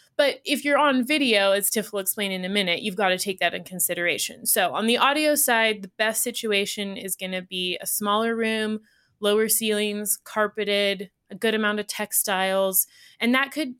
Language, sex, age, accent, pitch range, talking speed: English, female, 20-39, American, 185-220 Hz, 195 wpm